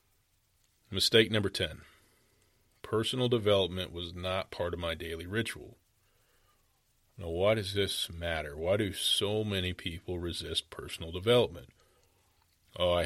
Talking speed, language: 125 wpm, English